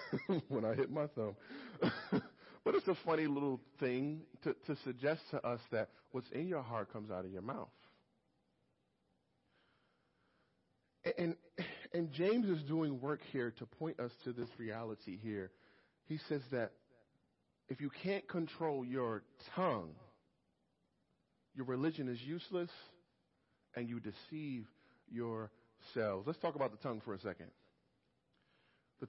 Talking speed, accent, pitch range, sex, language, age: 140 wpm, American, 115-150 Hz, male, English, 40-59